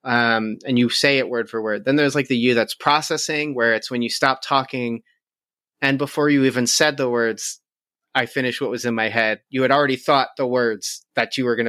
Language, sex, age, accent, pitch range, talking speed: English, male, 30-49, American, 120-155 Hz, 230 wpm